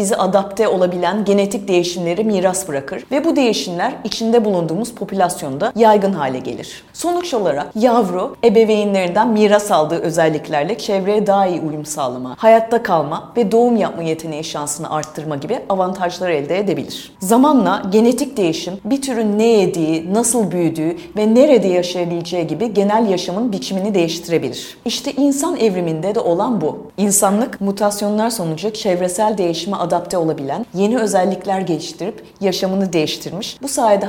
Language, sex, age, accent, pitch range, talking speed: Turkish, female, 40-59, native, 170-225 Hz, 135 wpm